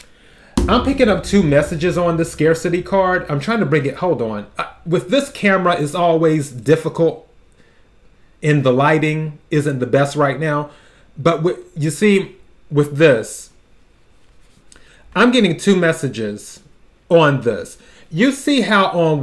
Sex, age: male, 30-49